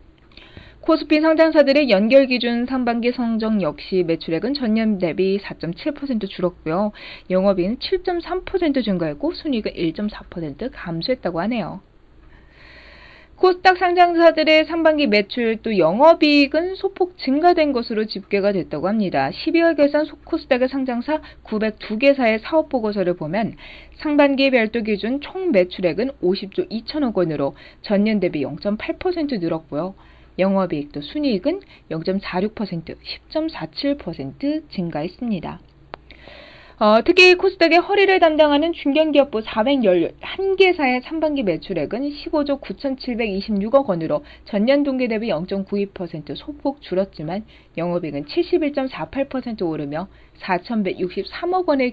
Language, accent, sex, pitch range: Korean, native, female, 185-300 Hz